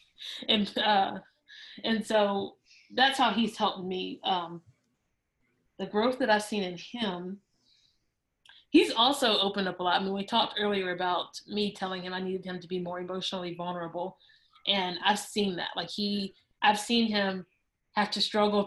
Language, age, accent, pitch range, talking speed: English, 20-39, American, 180-205 Hz, 165 wpm